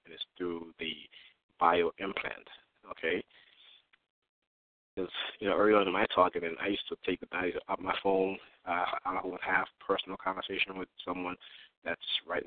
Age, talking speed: 30-49, 170 wpm